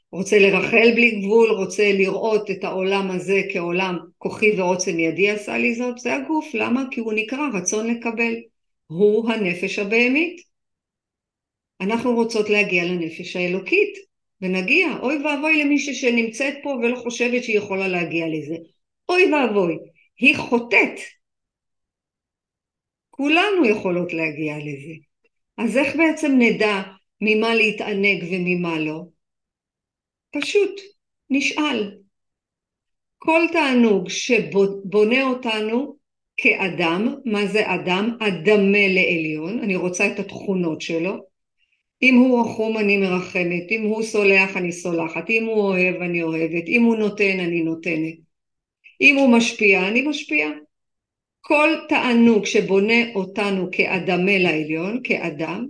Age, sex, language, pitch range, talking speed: 50-69, female, Hebrew, 185-240 Hz, 115 wpm